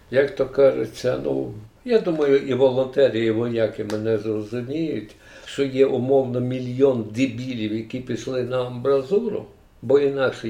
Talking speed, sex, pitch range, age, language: 125 wpm, male, 125-165 Hz, 60-79, Ukrainian